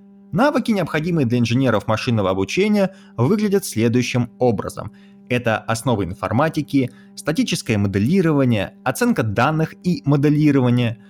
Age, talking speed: 20-39, 95 wpm